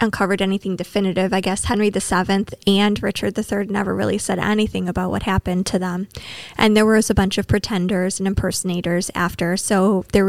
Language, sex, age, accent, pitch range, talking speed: English, female, 20-39, American, 185-210 Hz, 190 wpm